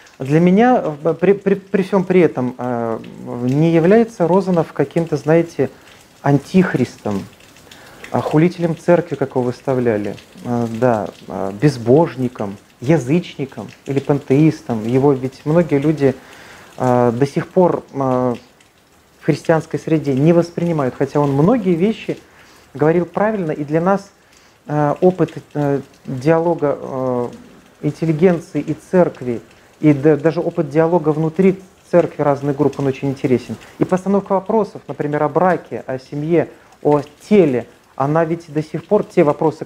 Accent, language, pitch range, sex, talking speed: native, Russian, 135-170 Hz, male, 115 wpm